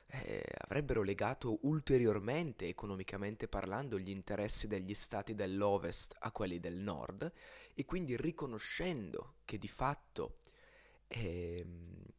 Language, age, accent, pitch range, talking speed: Italian, 20-39, native, 100-135 Hz, 110 wpm